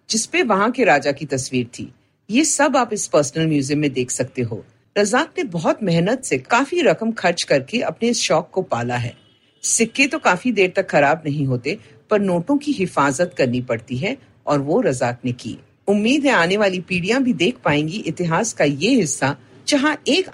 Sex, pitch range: female, 145-230 Hz